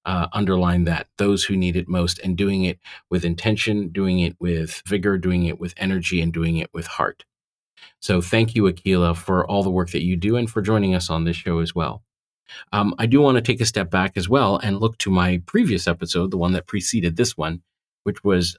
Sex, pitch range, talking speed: male, 90-100 Hz, 230 wpm